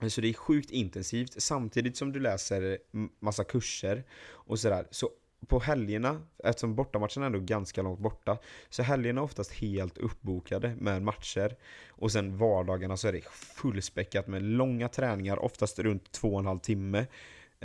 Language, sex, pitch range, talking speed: Swedish, male, 95-120 Hz, 165 wpm